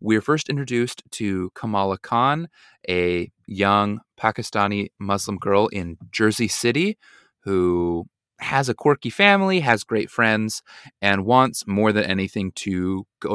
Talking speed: 130 wpm